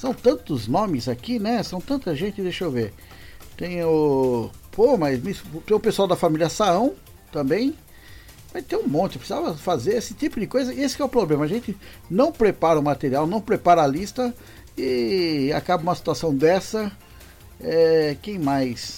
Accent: Brazilian